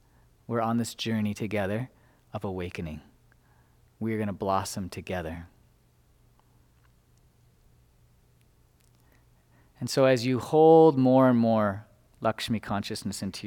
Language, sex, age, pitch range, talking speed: English, male, 30-49, 105-130 Hz, 105 wpm